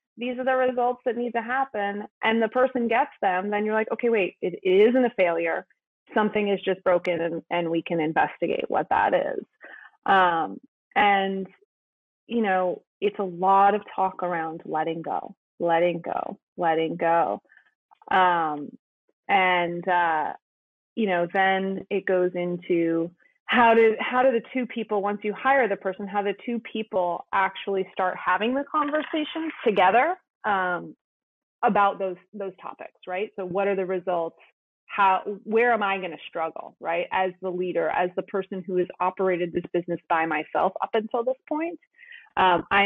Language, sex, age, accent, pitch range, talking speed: English, female, 30-49, American, 180-240 Hz, 170 wpm